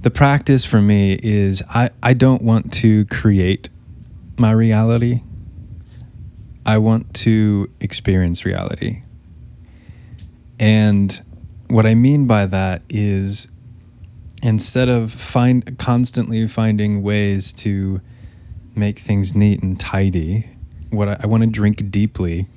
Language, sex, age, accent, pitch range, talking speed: English, male, 20-39, American, 95-110 Hz, 115 wpm